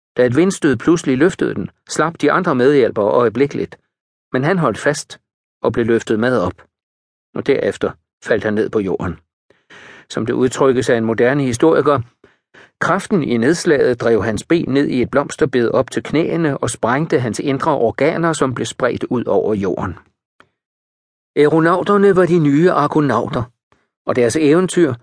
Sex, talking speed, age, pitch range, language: male, 160 wpm, 60-79, 120-165 Hz, Danish